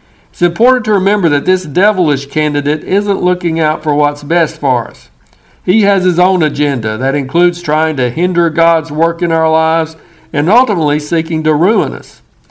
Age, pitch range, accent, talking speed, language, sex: 60-79, 150-180 Hz, American, 175 wpm, English, male